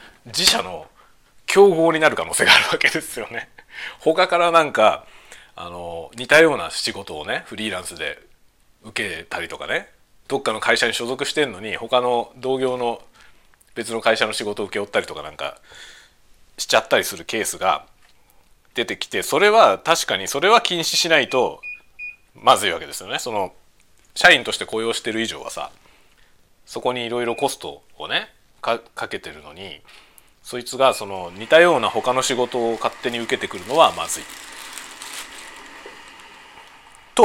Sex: male